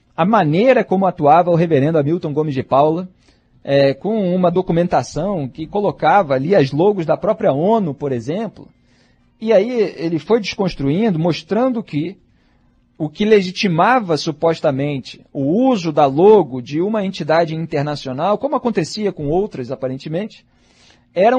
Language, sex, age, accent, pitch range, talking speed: Portuguese, male, 40-59, Brazilian, 145-215 Hz, 135 wpm